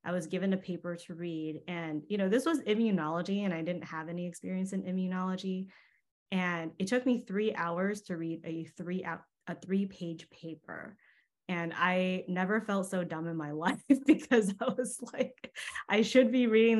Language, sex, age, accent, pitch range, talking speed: English, female, 20-39, American, 165-195 Hz, 185 wpm